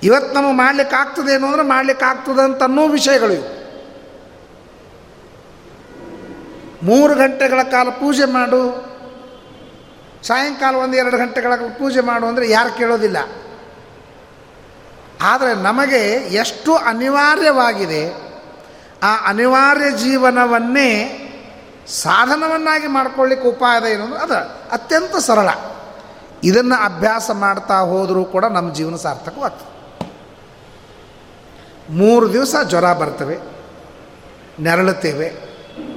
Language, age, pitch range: Kannada, 30-49, 190-270 Hz